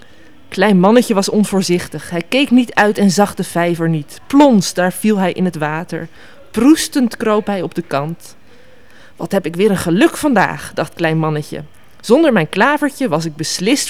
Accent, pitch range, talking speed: Dutch, 165-240 Hz, 180 wpm